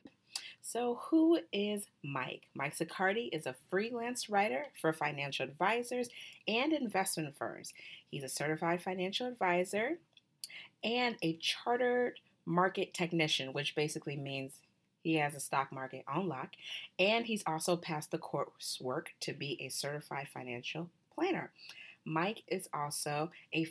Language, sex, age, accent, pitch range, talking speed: English, female, 30-49, American, 140-190 Hz, 130 wpm